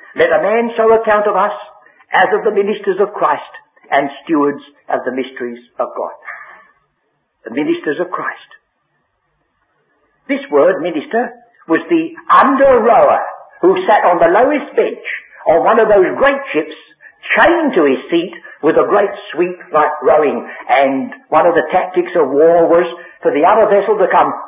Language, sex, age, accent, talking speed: English, male, 60-79, British, 165 wpm